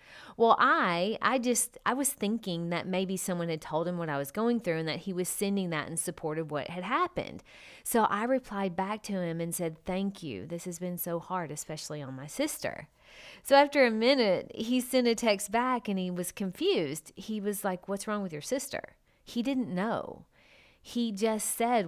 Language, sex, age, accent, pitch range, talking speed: English, female, 30-49, American, 175-250 Hz, 210 wpm